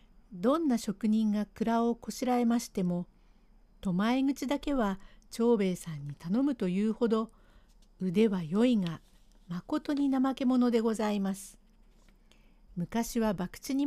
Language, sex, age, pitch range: Japanese, female, 50-69, 190-250 Hz